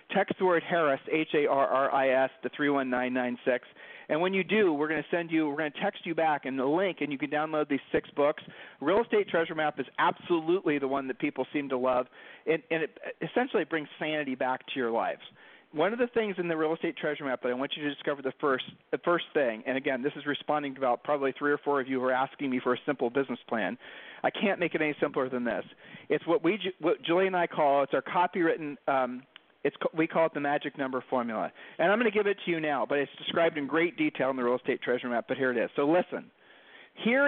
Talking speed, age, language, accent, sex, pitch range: 250 wpm, 40-59, English, American, male, 140-185 Hz